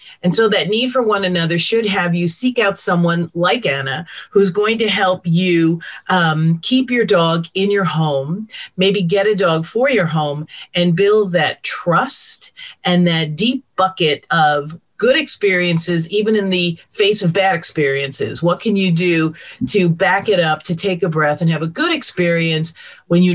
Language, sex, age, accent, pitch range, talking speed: English, female, 40-59, American, 165-215 Hz, 185 wpm